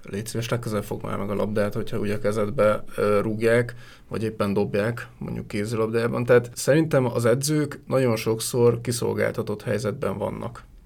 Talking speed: 150 wpm